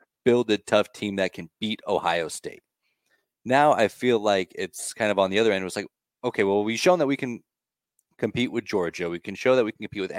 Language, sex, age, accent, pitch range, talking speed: English, male, 20-39, American, 95-115 Hz, 245 wpm